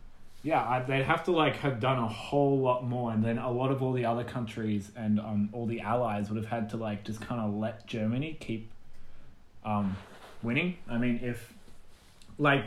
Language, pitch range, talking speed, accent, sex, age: English, 105-125 Hz, 205 wpm, Australian, male, 20-39